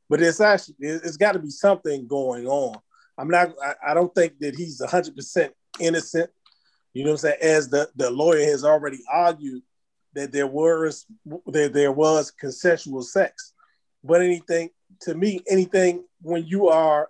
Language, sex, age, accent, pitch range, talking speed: English, male, 30-49, American, 140-175 Hz, 160 wpm